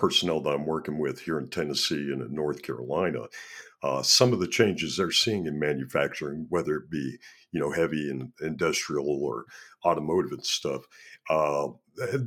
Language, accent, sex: English, American, male